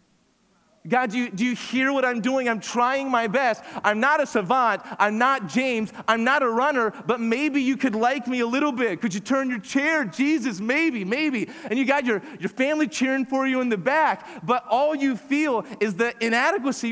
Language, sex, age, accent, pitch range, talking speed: English, male, 30-49, American, 205-255 Hz, 215 wpm